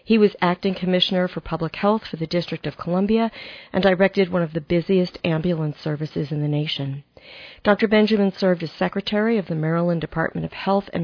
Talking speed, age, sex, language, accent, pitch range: 190 wpm, 40-59, female, English, American, 165-205 Hz